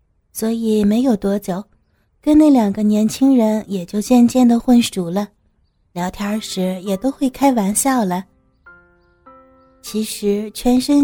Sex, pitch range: female, 190-245 Hz